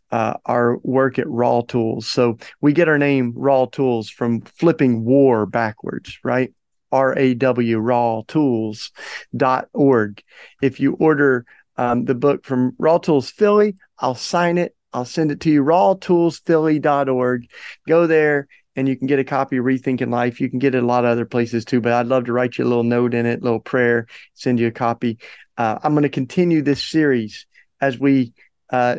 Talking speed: 180 wpm